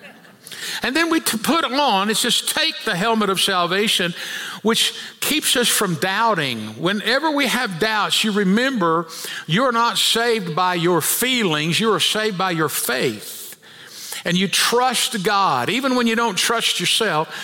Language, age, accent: English, 50-69, American